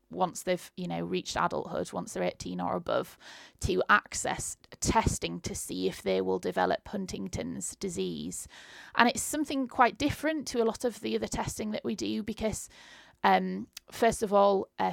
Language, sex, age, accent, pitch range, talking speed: English, female, 30-49, British, 180-220 Hz, 175 wpm